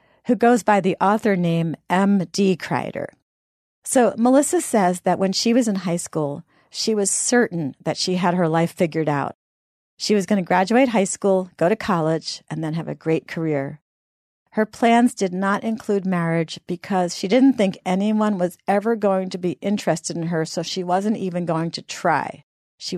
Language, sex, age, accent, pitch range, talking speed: English, female, 50-69, American, 160-210 Hz, 185 wpm